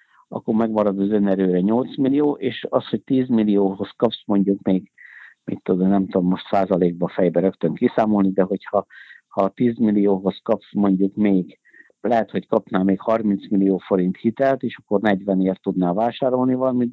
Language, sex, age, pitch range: Hungarian, male, 50-69, 95-115 Hz